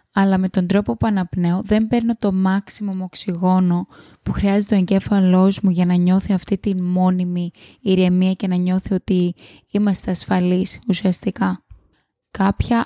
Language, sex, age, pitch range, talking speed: Greek, female, 20-39, 185-215 Hz, 145 wpm